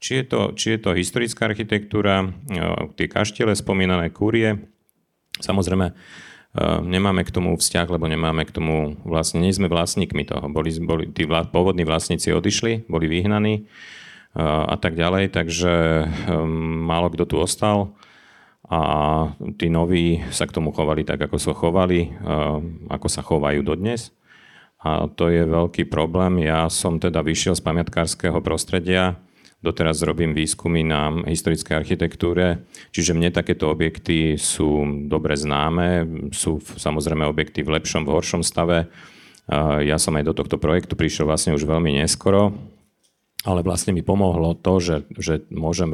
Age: 40-59